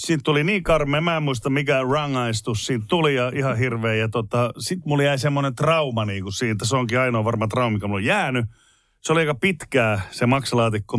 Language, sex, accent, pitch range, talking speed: Finnish, male, native, 115-155 Hz, 210 wpm